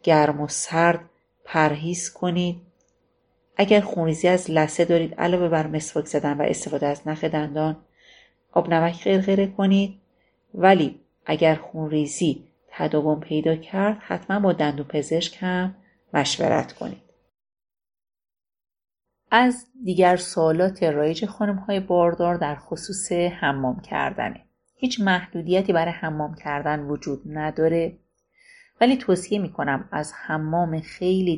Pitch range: 155-190 Hz